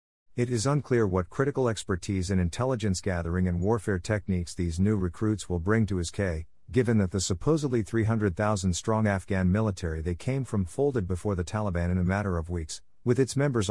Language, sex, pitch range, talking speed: English, male, 90-110 Hz, 175 wpm